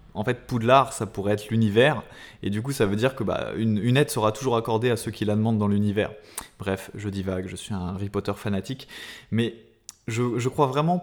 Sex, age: male, 20-39